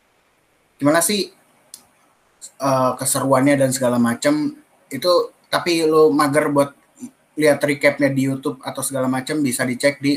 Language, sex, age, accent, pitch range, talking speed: Indonesian, male, 20-39, native, 130-185 Hz, 130 wpm